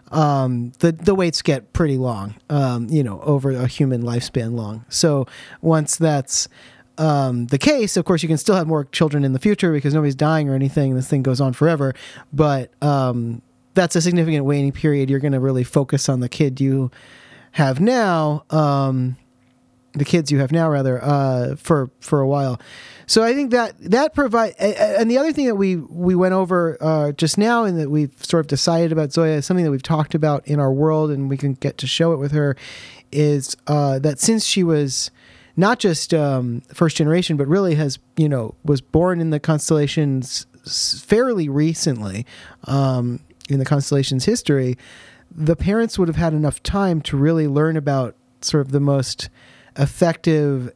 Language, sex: English, male